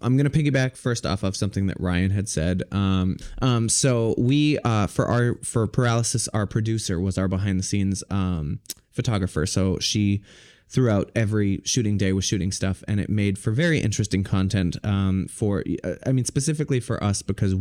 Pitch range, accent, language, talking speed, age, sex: 95-110 Hz, American, English, 185 wpm, 20-39, male